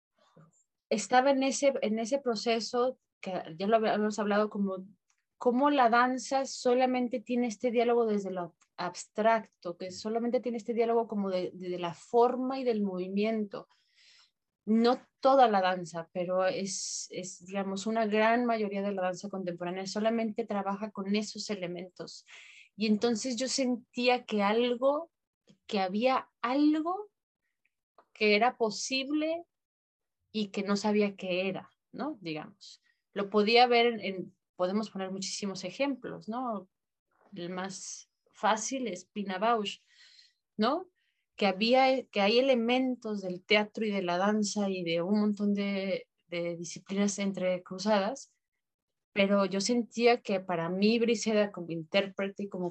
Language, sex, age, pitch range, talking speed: Spanish, female, 30-49, 190-240 Hz, 140 wpm